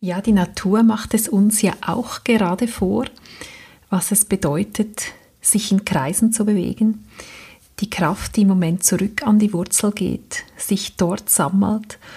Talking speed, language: 155 wpm, German